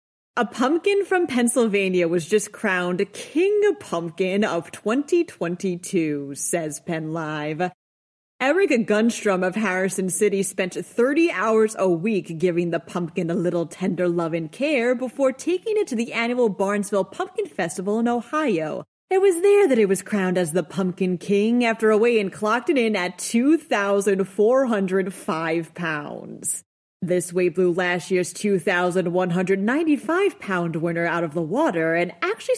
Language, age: English, 30-49